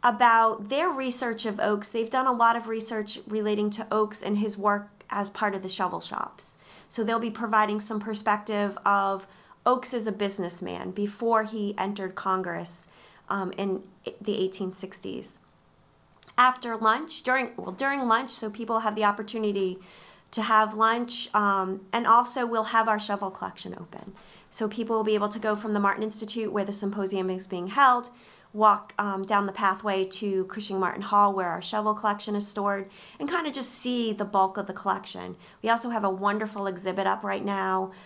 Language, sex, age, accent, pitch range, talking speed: English, female, 30-49, American, 190-225 Hz, 185 wpm